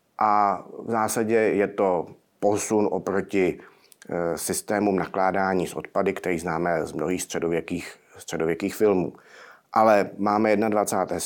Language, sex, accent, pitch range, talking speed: Czech, male, native, 95-115 Hz, 110 wpm